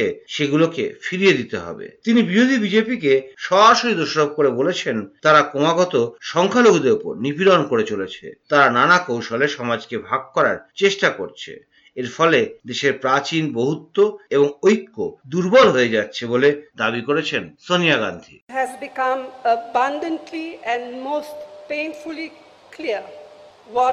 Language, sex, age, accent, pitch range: Bengali, male, 50-69, native, 230-315 Hz